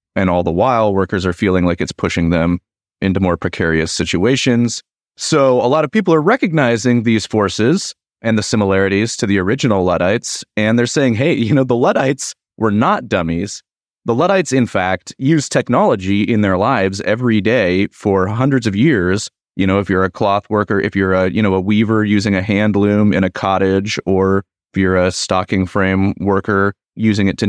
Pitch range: 95-125 Hz